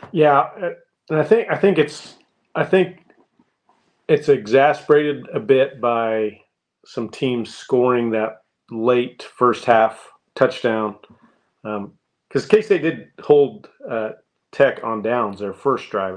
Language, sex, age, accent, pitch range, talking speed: English, male, 40-59, American, 110-140 Hz, 130 wpm